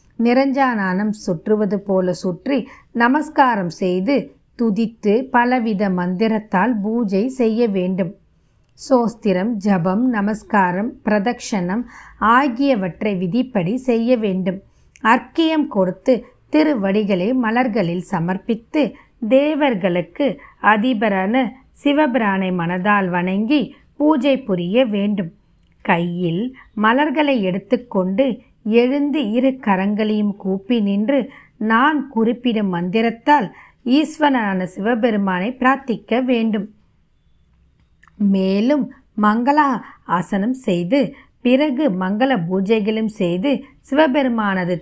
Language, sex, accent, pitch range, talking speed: Tamil, female, native, 190-255 Hz, 75 wpm